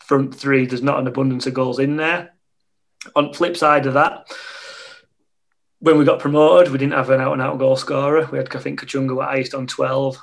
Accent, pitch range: British, 125-145 Hz